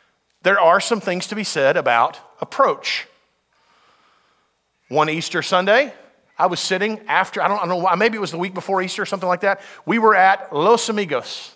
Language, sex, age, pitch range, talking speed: English, male, 40-59, 165-205 Hz, 195 wpm